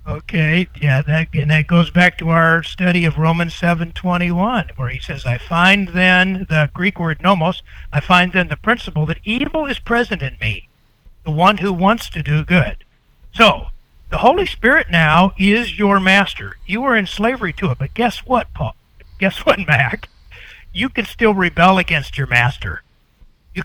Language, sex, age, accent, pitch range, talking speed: English, male, 60-79, American, 145-190 Hz, 175 wpm